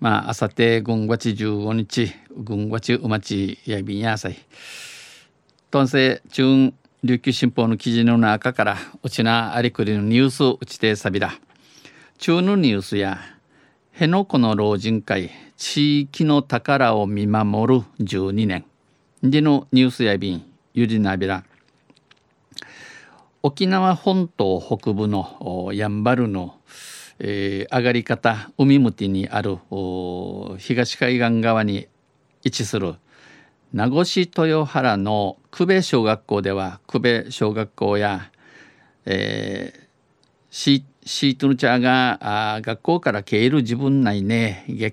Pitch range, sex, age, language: 105-135 Hz, male, 50-69, Japanese